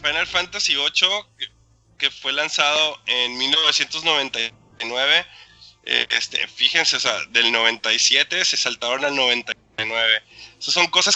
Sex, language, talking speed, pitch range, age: male, Spanish, 115 wpm, 125-145 Hz, 20-39